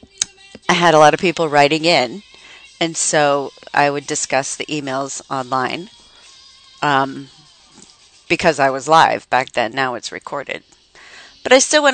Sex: female